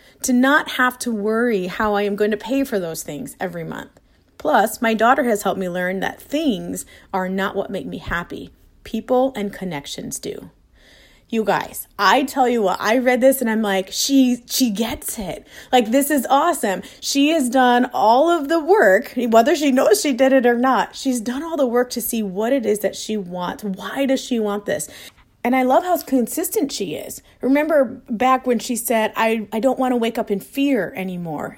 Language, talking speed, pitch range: English, 210 wpm, 200-260 Hz